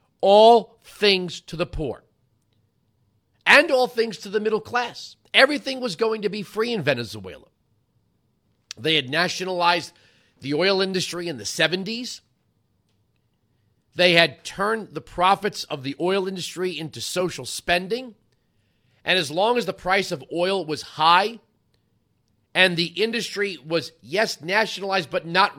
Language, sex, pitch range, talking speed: English, male, 125-210 Hz, 140 wpm